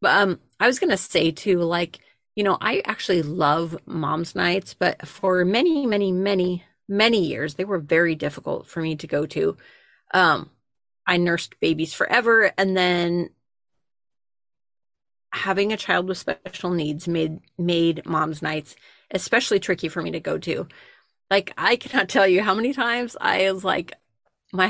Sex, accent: female, American